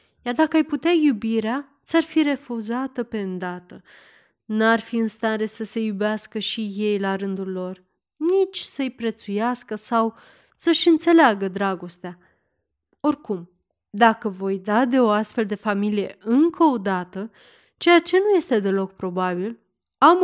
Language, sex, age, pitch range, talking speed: Romanian, female, 30-49, 195-260 Hz, 140 wpm